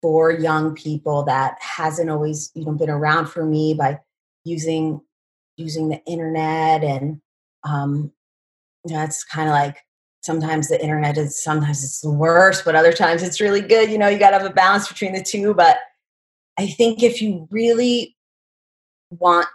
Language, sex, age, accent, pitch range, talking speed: English, female, 30-49, American, 150-175 Hz, 165 wpm